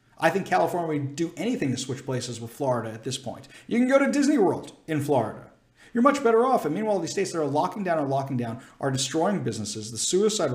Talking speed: 240 wpm